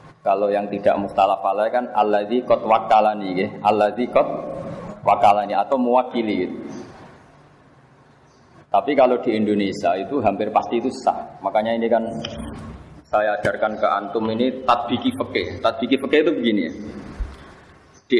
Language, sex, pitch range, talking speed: Malay, male, 105-130 Hz, 130 wpm